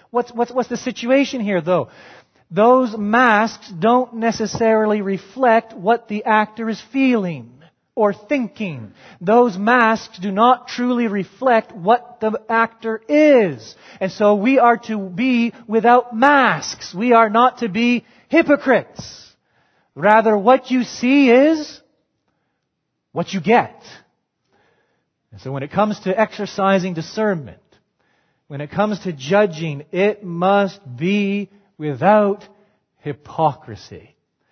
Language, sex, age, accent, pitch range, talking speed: English, male, 30-49, American, 135-225 Hz, 120 wpm